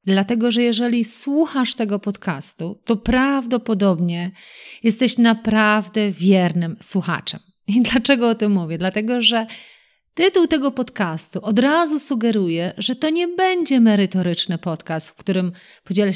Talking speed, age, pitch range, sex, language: 125 wpm, 30-49, 185-240 Hz, female, Polish